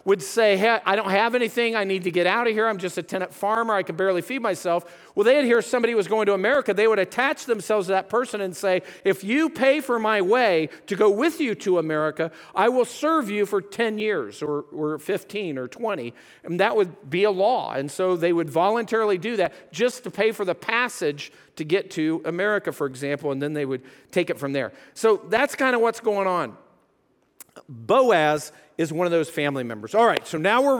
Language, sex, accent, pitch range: English, male, American, 180-240 Hz